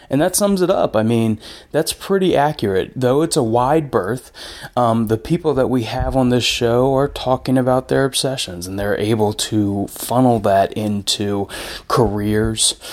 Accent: American